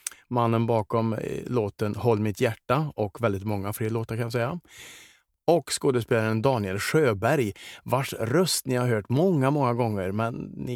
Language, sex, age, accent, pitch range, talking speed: Swedish, male, 30-49, Norwegian, 110-135 Hz, 155 wpm